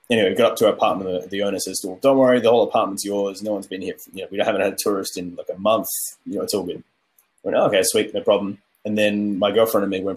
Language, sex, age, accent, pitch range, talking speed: English, male, 20-39, Australian, 95-115 Hz, 305 wpm